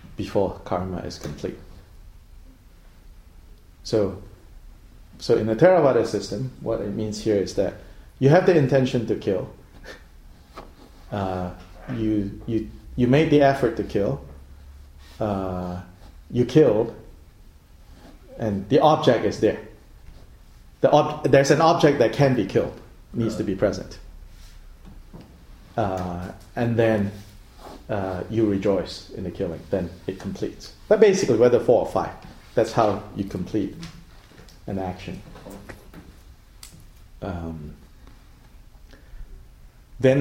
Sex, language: male, English